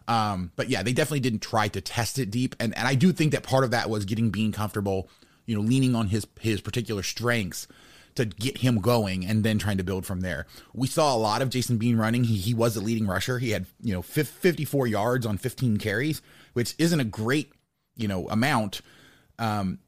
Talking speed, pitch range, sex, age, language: 225 wpm, 105-130 Hz, male, 30-49, English